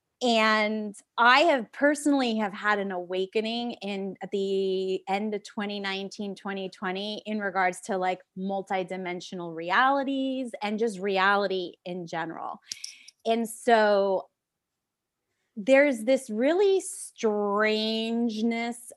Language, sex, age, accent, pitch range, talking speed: English, female, 20-39, American, 185-230 Hz, 100 wpm